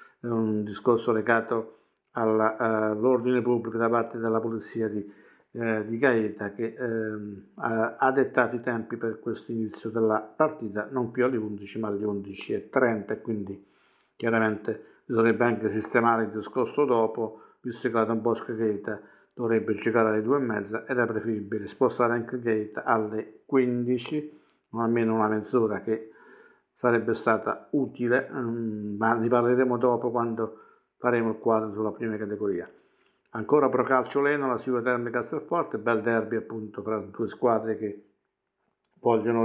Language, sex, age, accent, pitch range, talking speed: Italian, male, 60-79, native, 110-120 Hz, 140 wpm